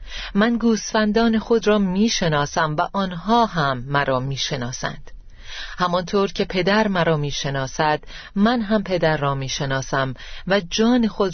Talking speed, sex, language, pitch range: 120 wpm, female, Persian, 150-200 Hz